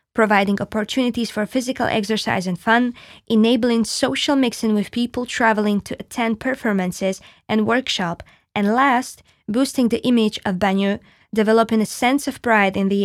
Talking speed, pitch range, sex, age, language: 145 wpm, 200-245 Hz, female, 20-39, Slovak